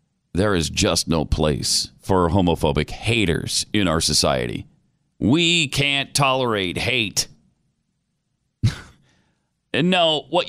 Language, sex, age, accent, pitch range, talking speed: English, male, 40-59, American, 110-180 Hz, 105 wpm